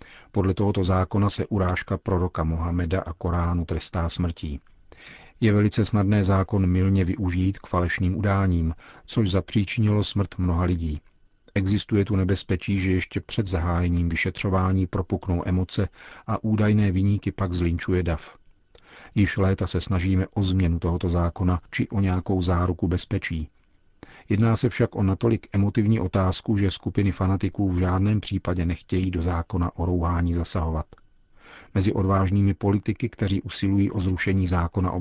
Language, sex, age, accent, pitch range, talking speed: Czech, male, 40-59, native, 90-100 Hz, 140 wpm